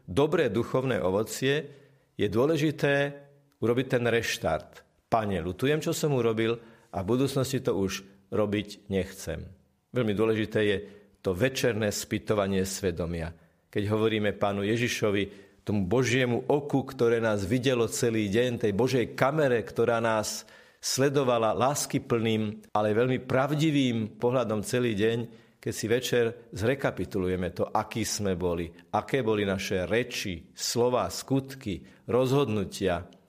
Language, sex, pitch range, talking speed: Slovak, male, 100-130 Hz, 120 wpm